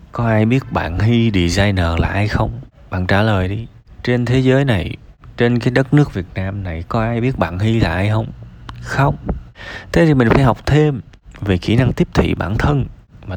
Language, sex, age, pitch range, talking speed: Vietnamese, male, 20-39, 95-120 Hz, 210 wpm